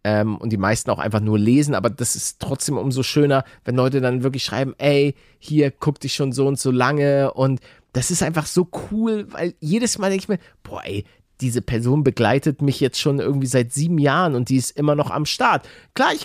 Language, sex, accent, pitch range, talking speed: German, male, German, 120-175 Hz, 225 wpm